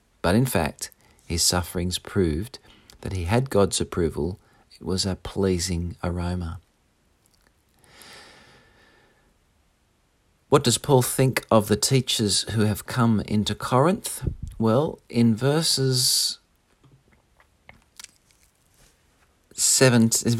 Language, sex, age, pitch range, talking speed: English, male, 40-59, 95-120 Hz, 95 wpm